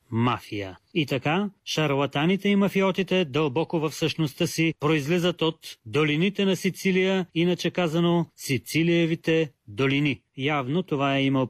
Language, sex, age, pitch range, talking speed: Bulgarian, male, 30-49, 130-165 Hz, 120 wpm